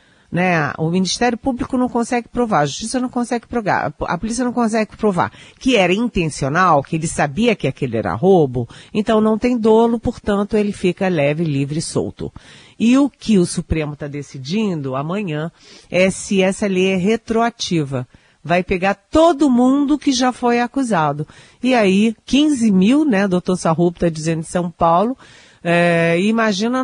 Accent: Brazilian